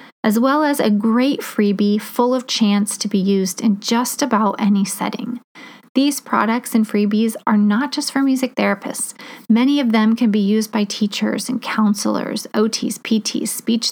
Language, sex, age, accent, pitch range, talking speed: English, female, 30-49, American, 210-265 Hz, 175 wpm